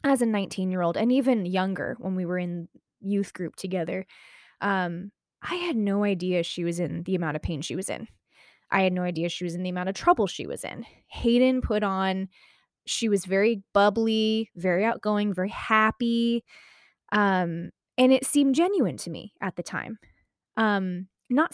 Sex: female